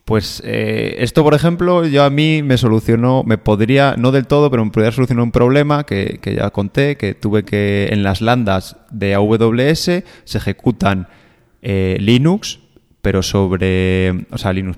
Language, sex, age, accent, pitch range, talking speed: Spanish, male, 20-39, Spanish, 100-130 Hz, 170 wpm